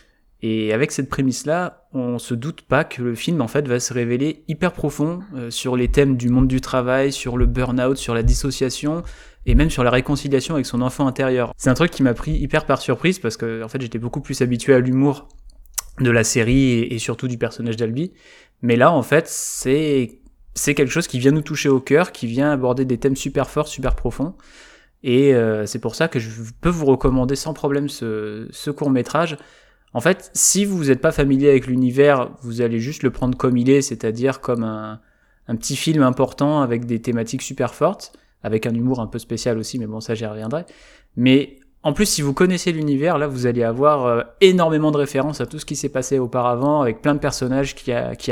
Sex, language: male, French